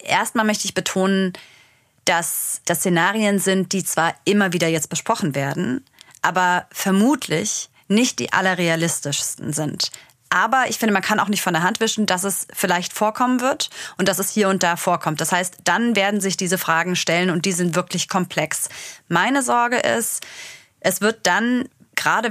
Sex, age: female, 30-49